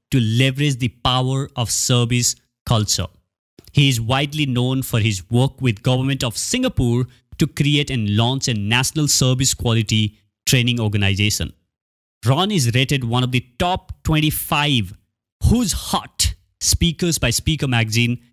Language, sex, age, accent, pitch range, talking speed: English, male, 30-49, Indian, 110-145 Hz, 140 wpm